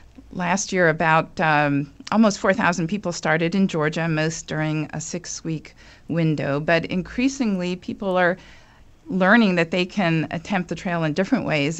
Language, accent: English, American